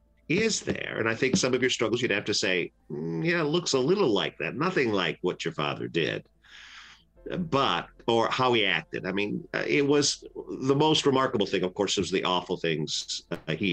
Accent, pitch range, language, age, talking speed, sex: American, 90-135 Hz, English, 50-69, 225 wpm, male